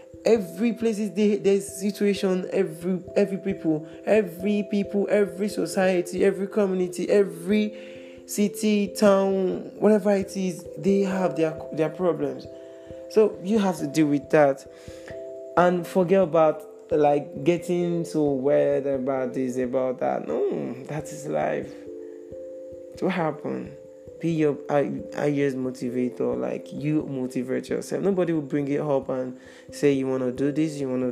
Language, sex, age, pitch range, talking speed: English, male, 20-39, 135-175 Hz, 140 wpm